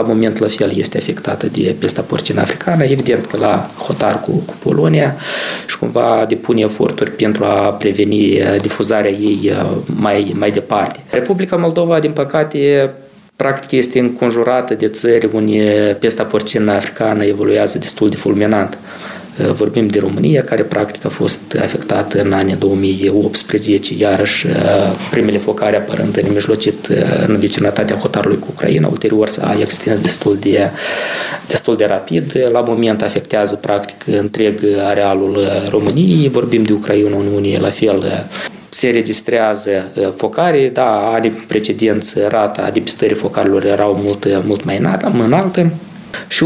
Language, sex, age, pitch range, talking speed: Romanian, male, 20-39, 100-120 Hz, 135 wpm